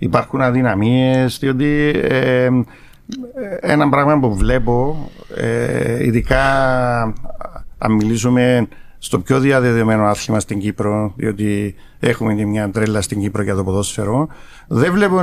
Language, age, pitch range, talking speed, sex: English, 60-79, 115-150 Hz, 105 wpm, male